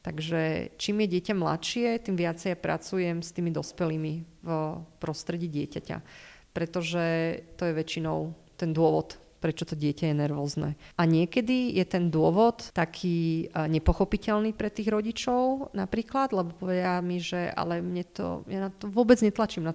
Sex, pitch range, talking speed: female, 165-195 Hz, 150 wpm